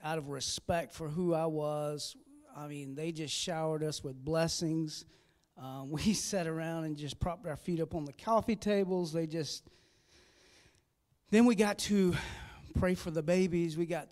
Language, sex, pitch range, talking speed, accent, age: English, male, 160-195 Hz, 175 wpm, American, 40-59